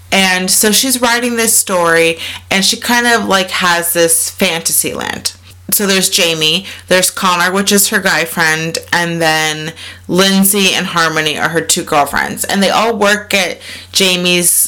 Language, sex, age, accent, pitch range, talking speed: English, female, 30-49, American, 155-195 Hz, 165 wpm